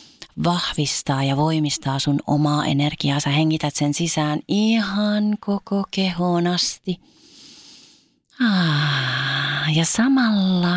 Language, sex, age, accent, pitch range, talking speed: Finnish, female, 30-49, native, 150-195 Hz, 95 wpm